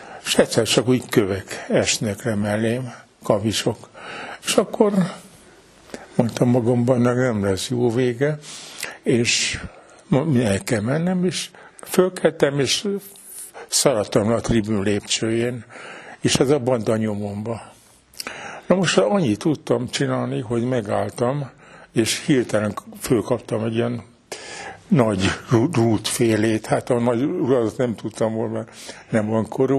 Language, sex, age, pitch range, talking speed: Hungarian, male, 60-79, 110-135 Hz, 115 wpm